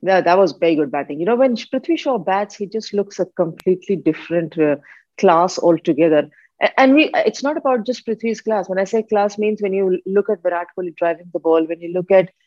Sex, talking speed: female, 230 wpm